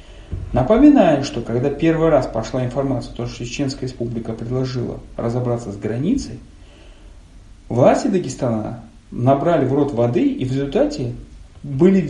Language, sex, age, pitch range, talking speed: Russian, male, 40-59, 110-150 Hz, 135 wpm